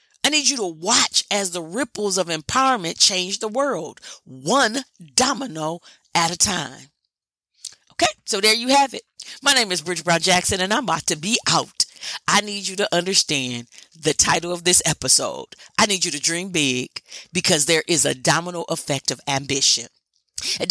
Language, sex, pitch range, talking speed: English, female, 170-230 Hz, 175 wpm